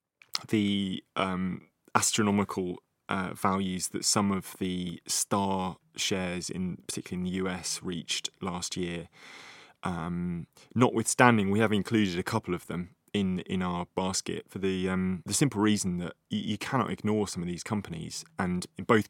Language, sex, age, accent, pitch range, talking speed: English, male, 20-39, British, 90-100 Hz, 155 wpm